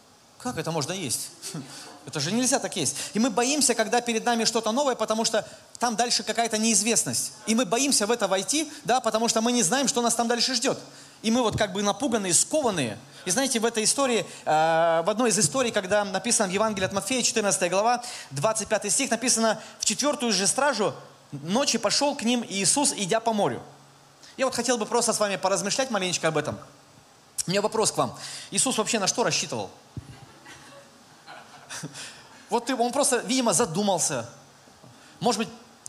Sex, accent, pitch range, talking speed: male, native, 185-240 Hz, 175 wpm